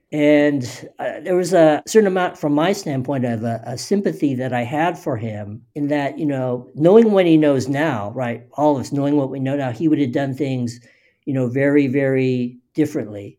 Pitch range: 125-155 Hz